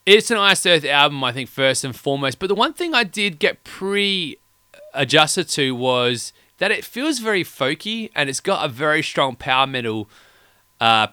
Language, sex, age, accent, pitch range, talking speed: English, male, 20-39, Australian, 105-150 Hz, 185 wpm